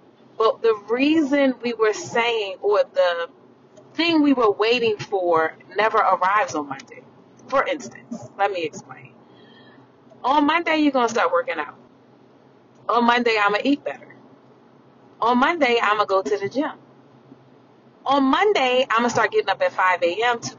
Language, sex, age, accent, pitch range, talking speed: English, female, 30-49, American, 200-300 Hz, 170 wpm